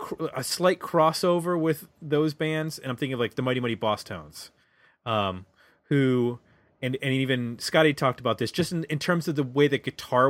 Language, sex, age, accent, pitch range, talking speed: English, male, 30-49, American, 115-140 Hz, 200 wpm